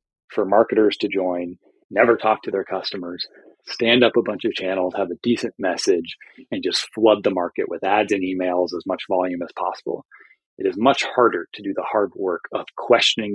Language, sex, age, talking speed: English, male, 30-49, 200 wpm